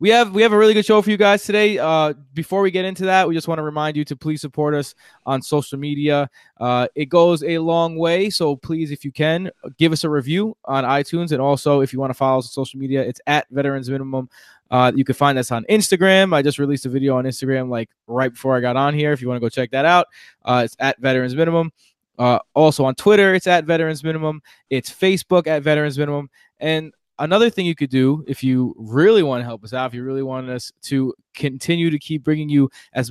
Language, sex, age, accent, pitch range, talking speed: English, male, 20-39, American, 130-160 Hz, 245 wpm